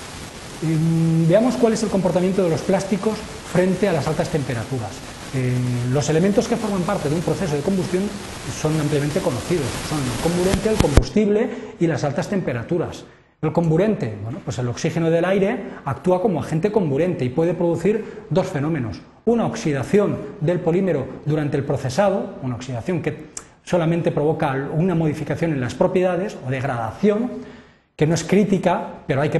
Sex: male